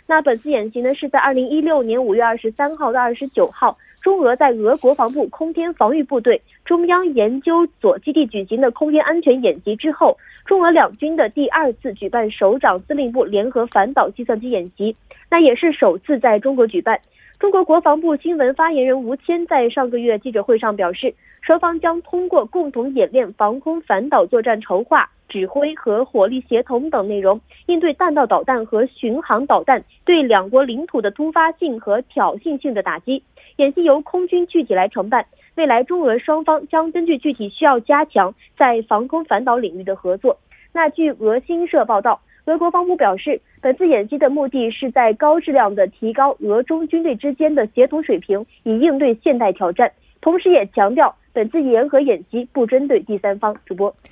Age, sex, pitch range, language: 20-39, female, 230-320 Hz, Korean